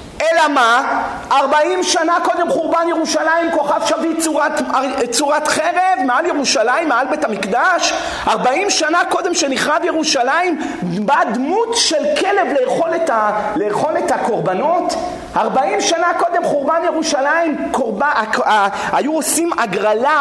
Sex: male